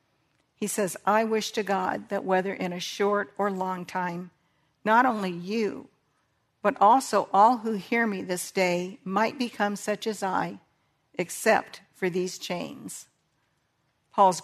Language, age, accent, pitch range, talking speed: English, 50-69, American, 180-205 Hz, 145 wpm